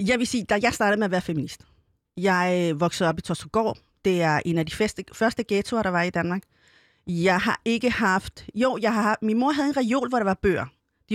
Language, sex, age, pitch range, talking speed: Danish, female, 30-49, 180-240 Hz, 220 wpm